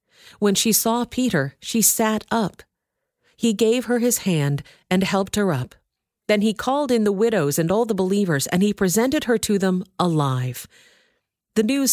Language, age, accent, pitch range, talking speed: English, 40-59, American, 155-220 Hz, 175 wpm